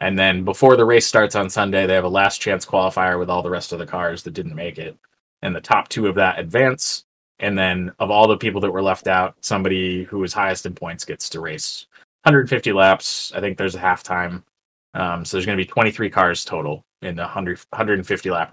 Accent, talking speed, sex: American, 225 wpm, male